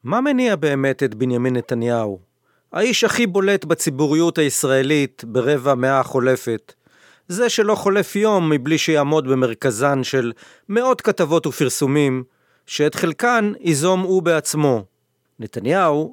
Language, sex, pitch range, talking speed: Hebrew, male, 130-175 Hz, 115 wpm